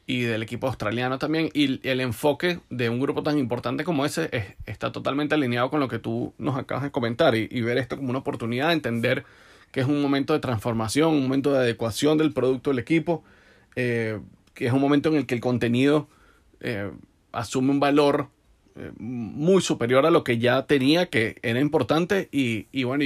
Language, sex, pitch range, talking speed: Spanish, male, 120-145 Hz, 200 wpm